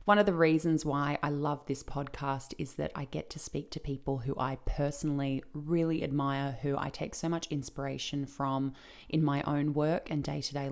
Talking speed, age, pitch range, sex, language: 195 wpm, 20-39, 135-160 Hz, female, English